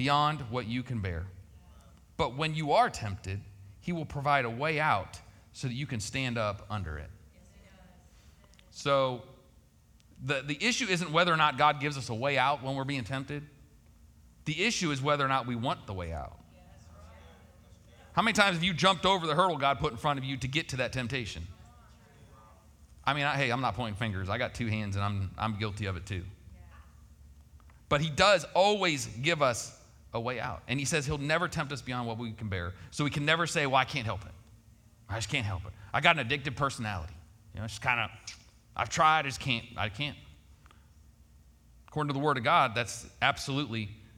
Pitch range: 100-140 Hz